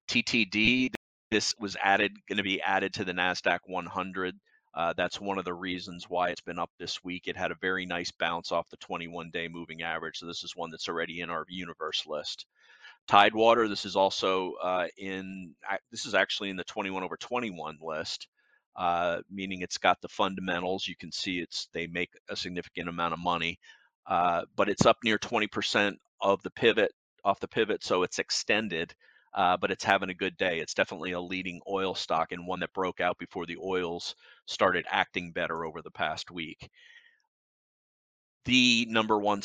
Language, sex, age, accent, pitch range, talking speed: English, male, 30-49, American, 90-100 Hz, 185 wpm